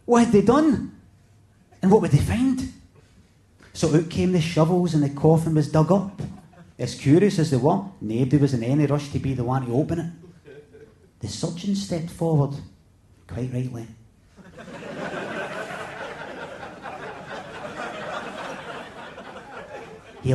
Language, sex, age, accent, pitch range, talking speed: English, male, 30-49, British, 115-170 Hz, 130 wpm